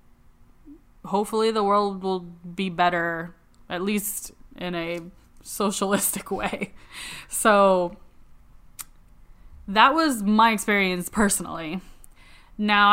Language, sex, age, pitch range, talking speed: English, female, 10-29, 180-220 Hz, 90 wpm